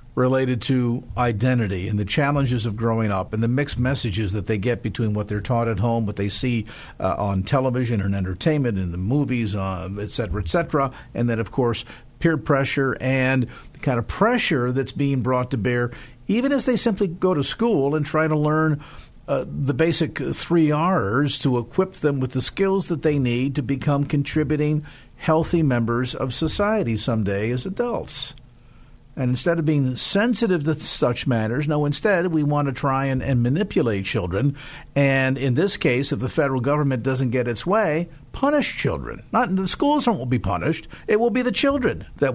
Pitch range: 120-155 Hz